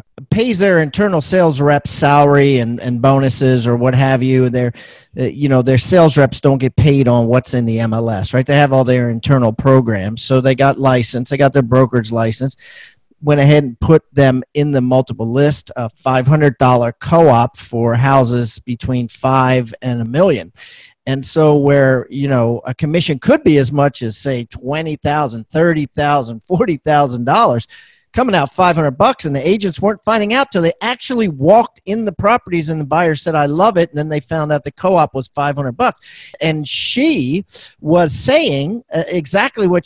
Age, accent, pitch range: 40-59, American, 130-160 Hz